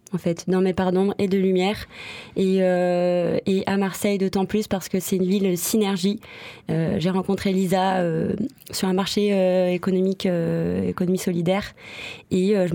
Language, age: French, 20-39